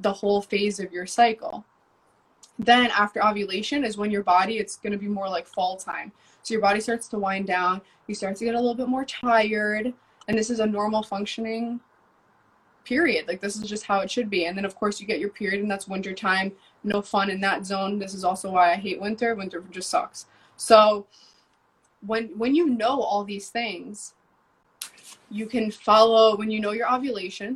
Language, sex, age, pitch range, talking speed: English, female, 20-39, 190-225 Hz, 205 wpm